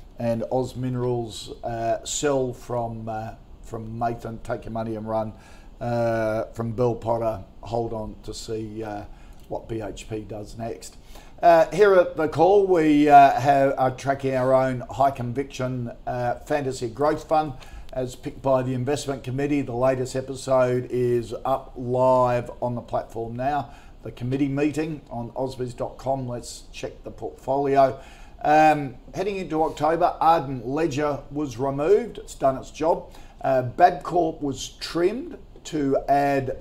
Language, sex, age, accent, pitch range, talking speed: English, male, 50-69, Australian, 115-140 Hz, 145 wpm